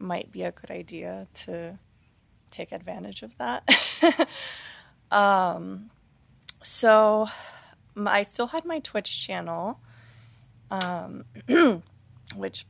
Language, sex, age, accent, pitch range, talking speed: English, female, 20-39, American, 155-205 Hz, 100 wpm